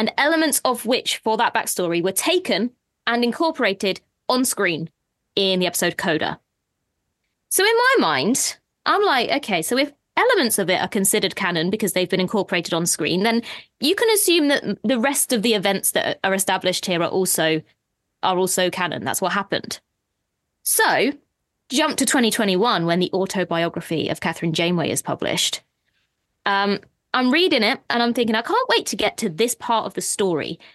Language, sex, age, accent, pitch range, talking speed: English, female, 20-39, British, 190-285 Hz, 180 wpm